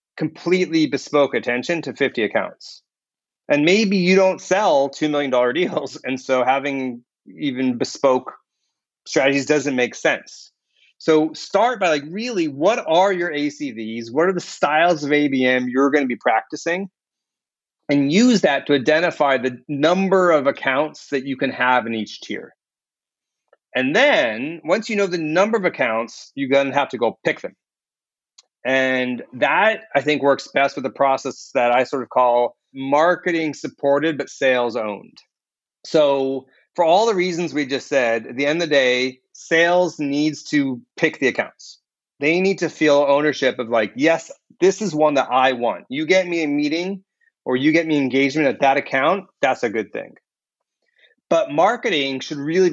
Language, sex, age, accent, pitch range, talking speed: English, male, 30-49, American, 130-170 Hz, 170 wpm